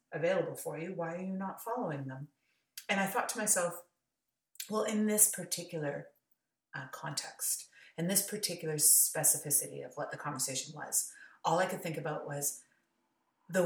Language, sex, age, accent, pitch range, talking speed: English, female, 30-49, American, 150-175 Hz, 160 wpm